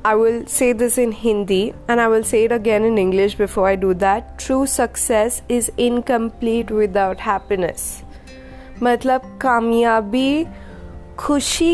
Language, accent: Hindi, native